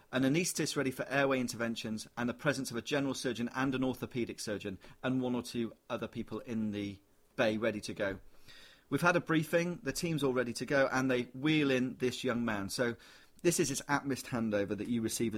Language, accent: English, British